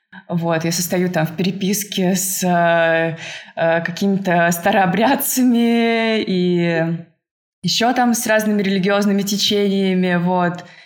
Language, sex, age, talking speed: Russian, female, 20-39, 105 wpm